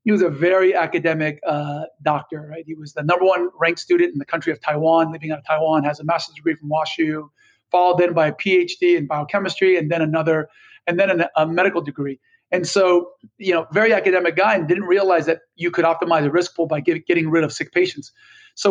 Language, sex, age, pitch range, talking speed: English, male, 40-59, 160-195 Hz, 230 wpm